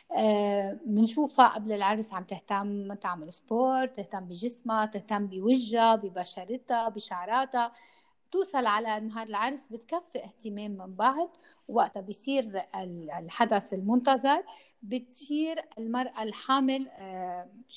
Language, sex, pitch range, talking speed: Arabic, female, 210-270 Hz, 100 wpm